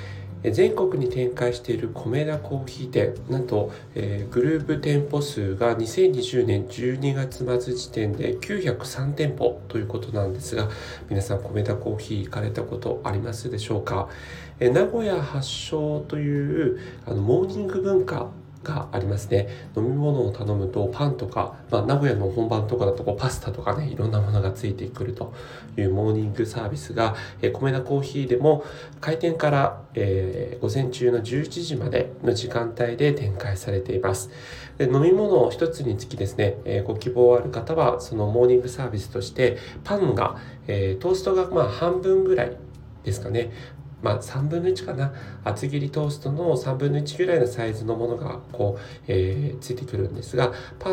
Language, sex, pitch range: Japanese, male, 110-140 Hz